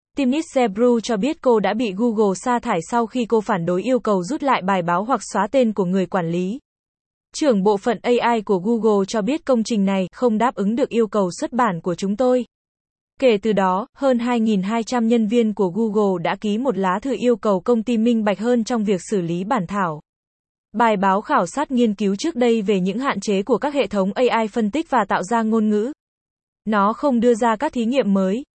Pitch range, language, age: 200-245 Hz, Vietnamese, 20-39